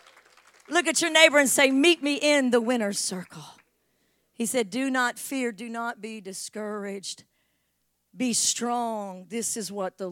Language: English